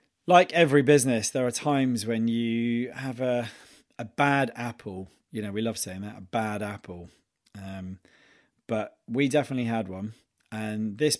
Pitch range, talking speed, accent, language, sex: 110-130 Hz, 160 wpm, British, English, male